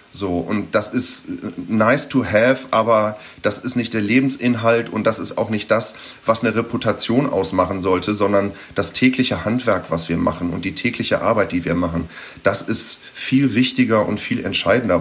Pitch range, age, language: 100-125 Hz, 30-49, German